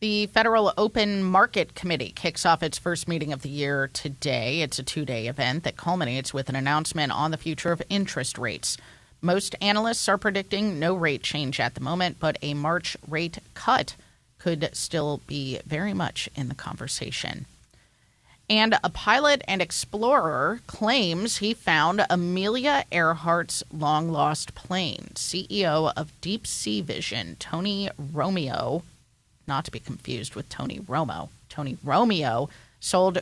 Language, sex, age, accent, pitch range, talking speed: English, female, 30-49, American, 140-185 Hz, 145 wpm